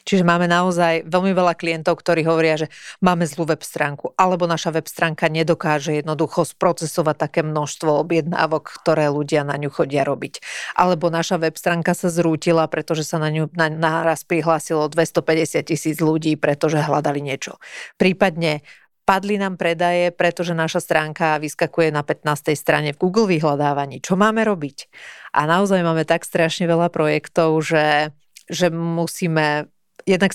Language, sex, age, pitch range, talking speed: Slovak, female, 40-59, 155-175 Hz, 150 wpm